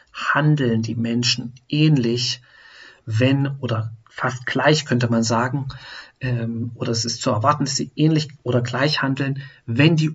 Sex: male